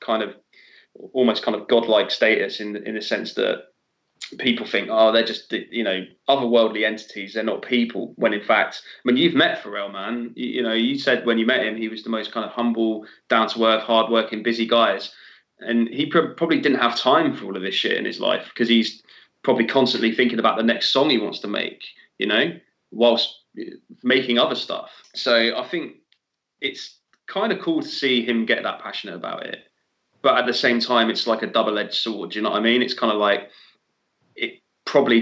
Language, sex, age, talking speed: English, male, 20-39, 210 wpm